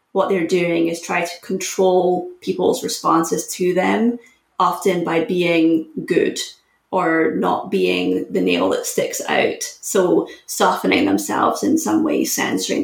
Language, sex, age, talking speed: English, female, 20-39, 140 wpm